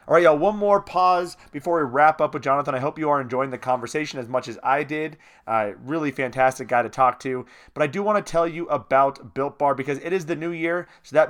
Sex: male